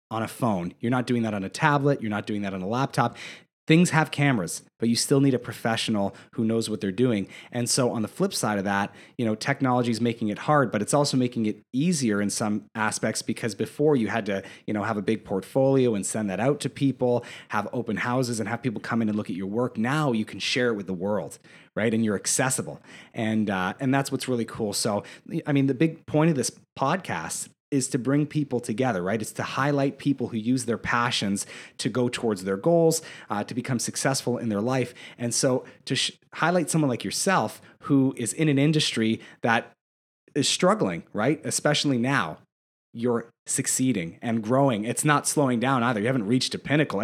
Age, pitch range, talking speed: 30-49, 110-140 Hz, 220 wpm